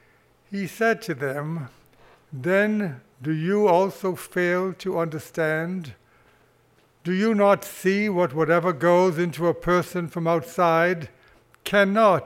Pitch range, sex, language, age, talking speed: 145-195 Hz, male, English, 60-79, 115 wpm